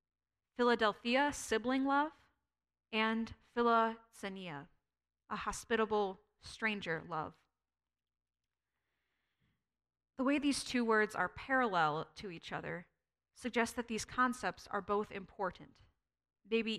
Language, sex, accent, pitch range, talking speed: English, female, American, 155-235 Hz, 95 wpm